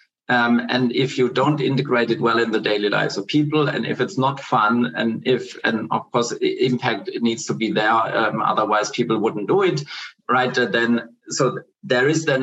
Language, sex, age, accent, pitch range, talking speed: English, male, 50-69, German, 120-140 Hz, 200 wpm